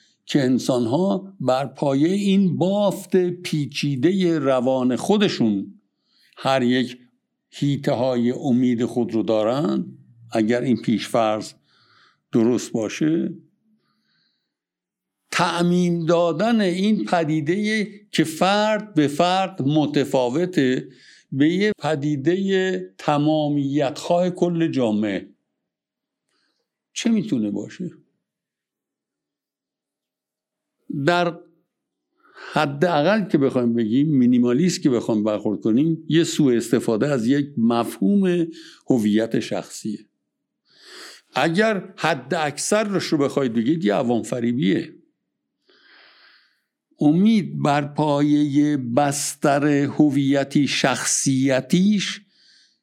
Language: Persian